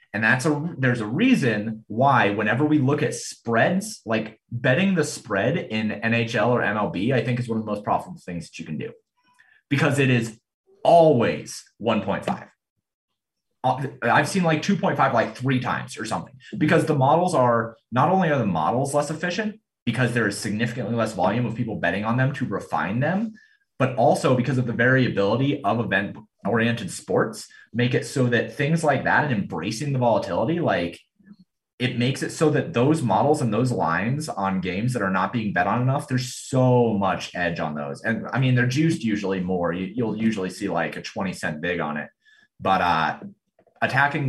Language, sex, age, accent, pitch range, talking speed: English, male, 30-49, American, 110-150 Hz, 190 wpm